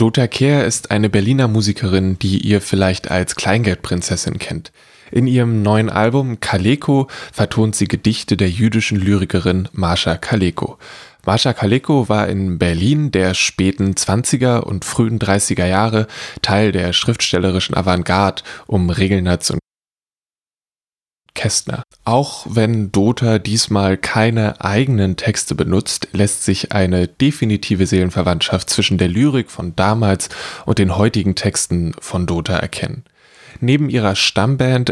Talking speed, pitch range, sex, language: 125 wpm, 95-115 Hz, male, German